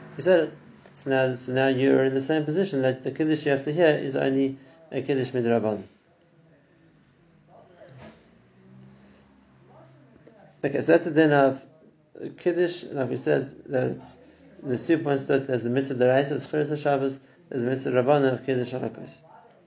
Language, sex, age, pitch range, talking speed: English, male, 50-69, 125-150 Hz, 170 wpm